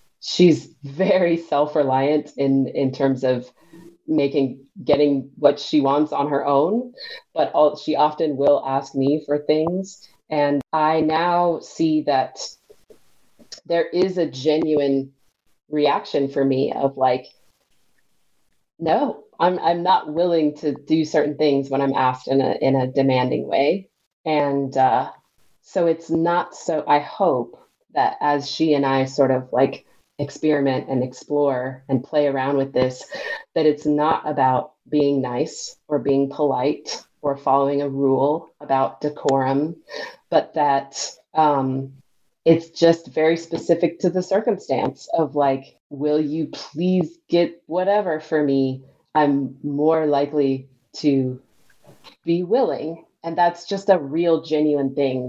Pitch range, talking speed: 135-160 Hz, 140 wpm